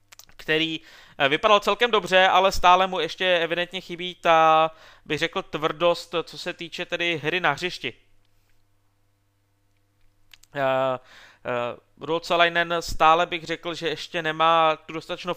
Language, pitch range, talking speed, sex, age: Czech, 135-160 Hz, 125 wpm, male, 20-39